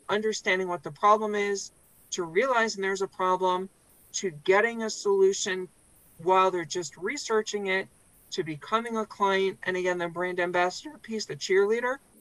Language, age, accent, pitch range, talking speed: English, 50-69, American, 185-210 Hz, 150 wpm